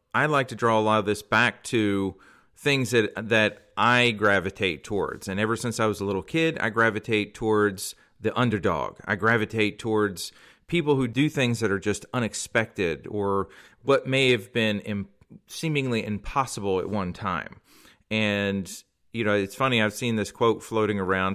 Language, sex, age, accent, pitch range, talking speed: English, male, 40-59, American, 100-115 Hz, 175 wpm